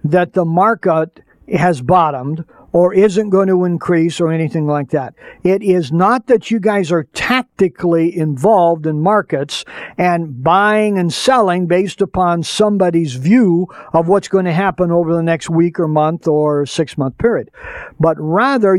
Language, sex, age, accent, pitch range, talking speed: English, male, 60-79, American, 160-200 Hz, 160 wpm